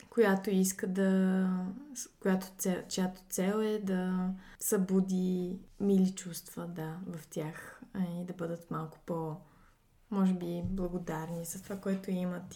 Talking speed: 125 wpm